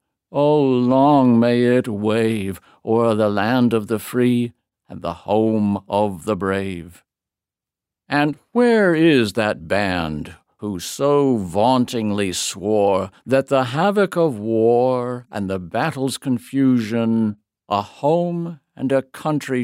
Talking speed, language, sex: 120 wpm, English, male